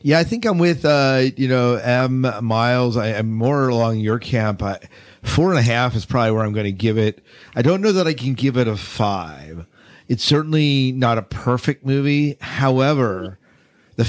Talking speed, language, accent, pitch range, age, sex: 190 wpm, English, American, 105-130 Hz, 50-69, male